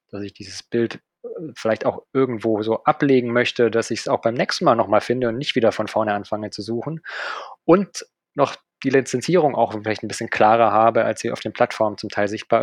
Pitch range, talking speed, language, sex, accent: 110-135 Hz, 215 wpm, German, male, German